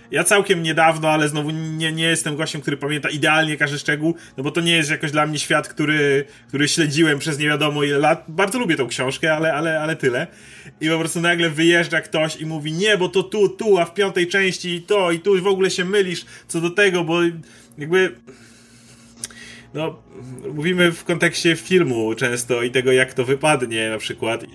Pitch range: 130-165 Hz